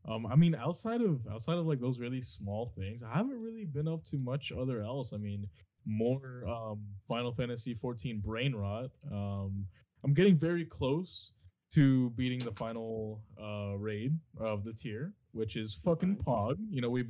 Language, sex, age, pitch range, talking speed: English, male, 20-39, 105-145 Hz, 180 wpm